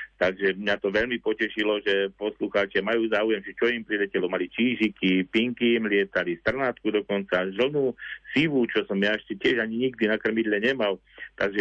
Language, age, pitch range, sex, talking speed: Slovak, 50-69, 95-120 Hz, male, 165 wpm